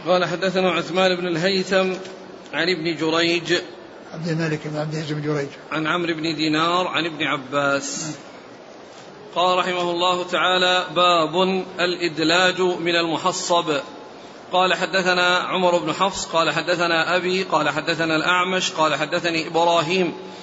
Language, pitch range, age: Arabic, 165-185 Hz, 40-59